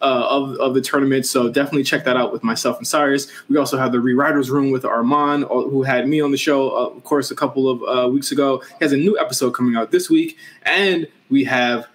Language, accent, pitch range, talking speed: English, American, 130-155 Hz, 245 wpm